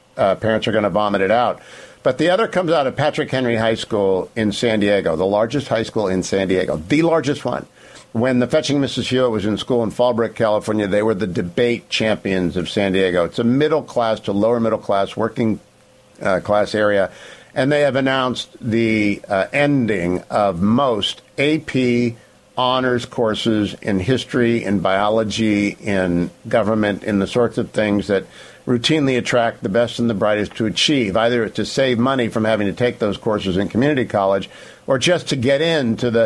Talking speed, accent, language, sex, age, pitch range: 190 wpm, American, English, male, 50-69, 105-140 Hz